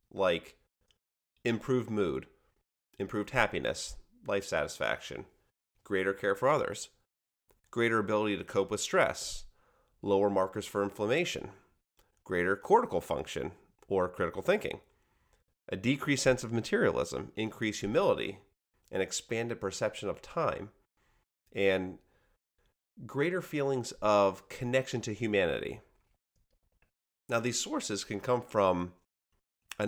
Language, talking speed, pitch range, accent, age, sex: English, 105 wpm, 95-125 Hz, American, 30-49, male